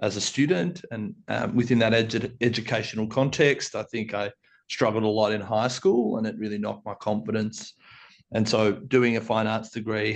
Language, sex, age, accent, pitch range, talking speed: English, male, 30-49, Australian, 110-120 Hz, 190 wpm